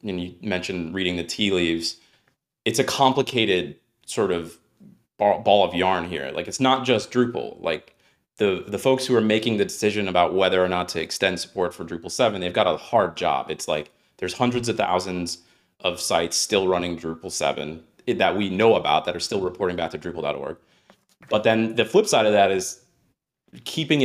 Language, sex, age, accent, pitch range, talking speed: English, male, 30-49, American, 85-110 Hz, 190 wpm